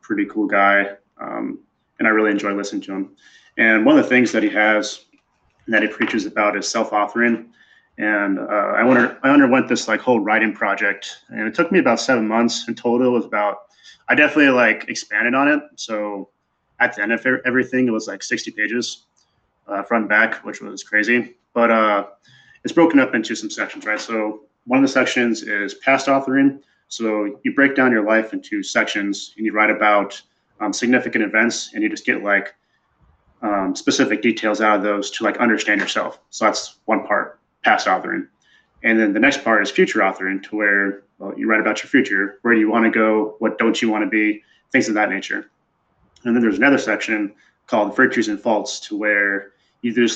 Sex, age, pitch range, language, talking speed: male, 20-39, 105-130 Hz, English, 200 wpm